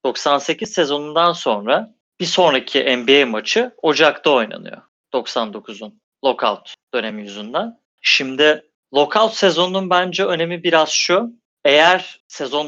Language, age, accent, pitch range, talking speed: Turkish, 30-49, native, 125-175 Hz, 105 wpm